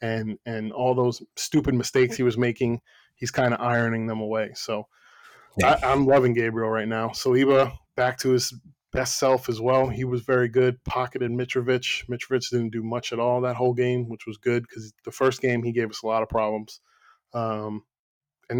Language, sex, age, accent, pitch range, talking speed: English, male, 20-39, American, 115-130 Hz, 195 wpm